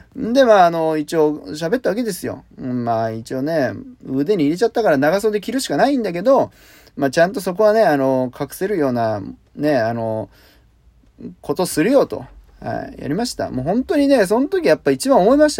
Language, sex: Japanese, male